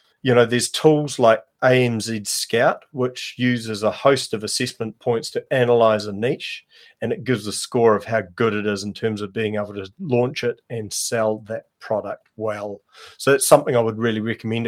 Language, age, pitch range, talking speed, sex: English, 30-49, 105-120 Hz, 195 wpm, male